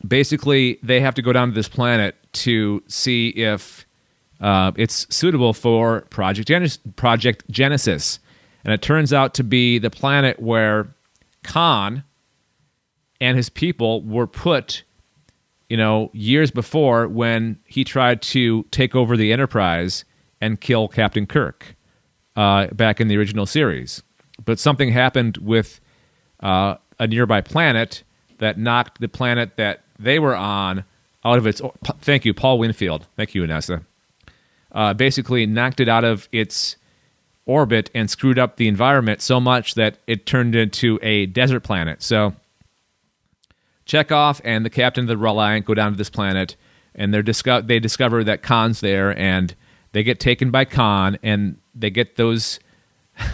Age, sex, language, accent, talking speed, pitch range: 40-59, male, English, American, 155 wpm, 105-125 Hz